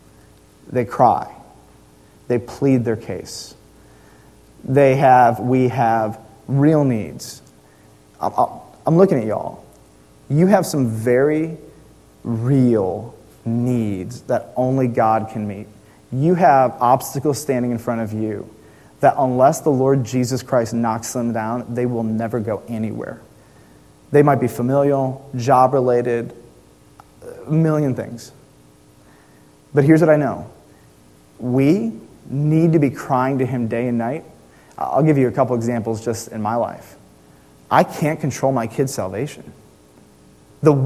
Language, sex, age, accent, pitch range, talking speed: English, male, 30-49, American, 110-150 Hz, 130 wpm